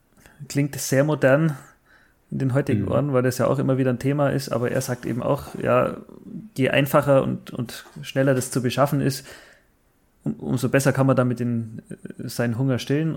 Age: 30-49